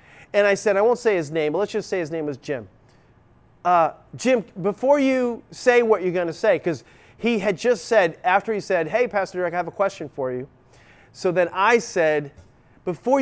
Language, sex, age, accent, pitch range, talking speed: English, male, 30-49, American, 145-200 Hz, 220 wpm